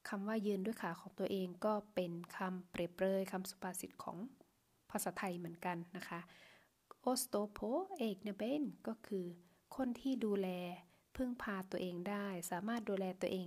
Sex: female